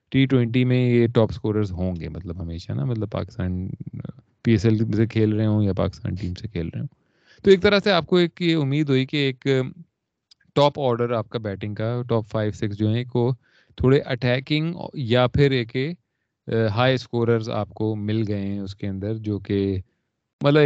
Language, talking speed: Urdu, 200 wpm